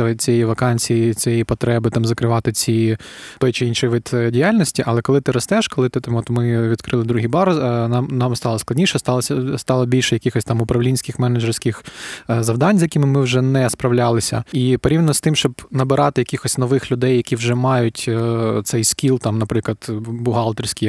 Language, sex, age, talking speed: Ukrainian, male, 20-39, 165 wpm